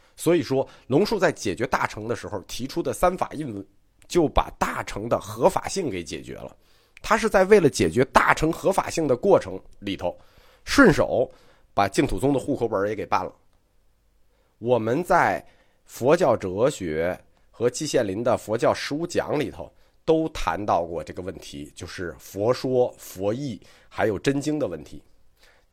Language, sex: Chinese, male